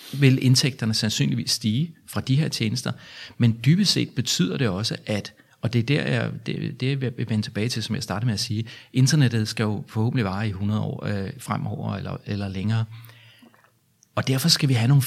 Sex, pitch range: male, 110-135 Hz